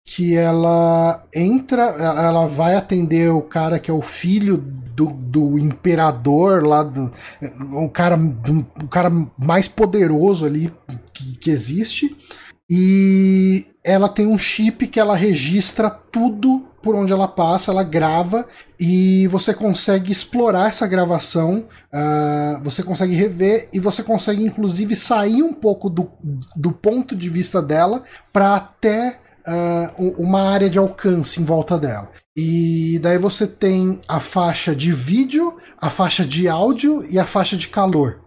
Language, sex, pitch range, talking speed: Portuguese, male, 155-195 Hz, 145 wpm